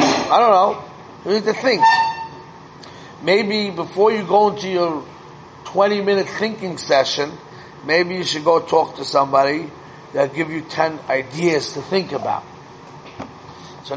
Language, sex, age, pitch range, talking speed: English, male, 30-49, 135-170 Hz, 140 wpm